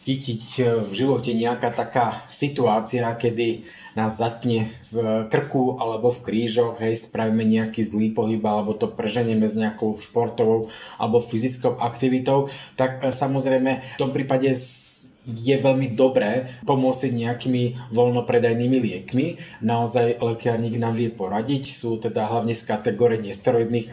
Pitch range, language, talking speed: 110-125 Hz, Slovak, 130 wpm